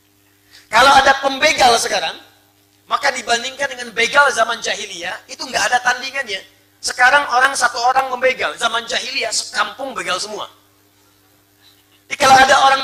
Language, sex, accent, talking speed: Indonesian, male, native, 125 wpm